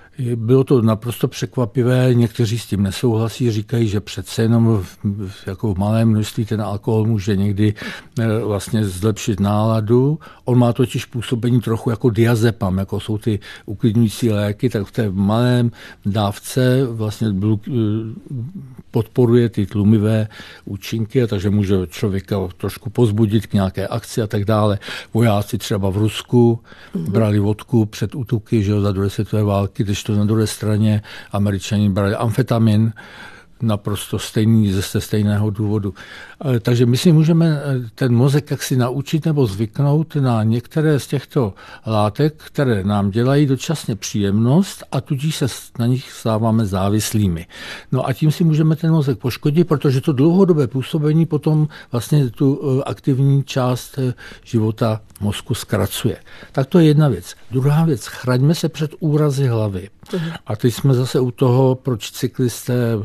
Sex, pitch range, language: male, 105-130 Hz, Czech